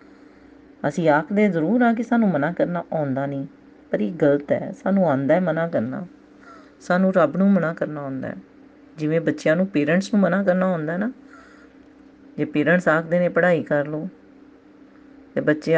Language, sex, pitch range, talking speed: Punjabi, female, 165-235 Hz, 165 wpm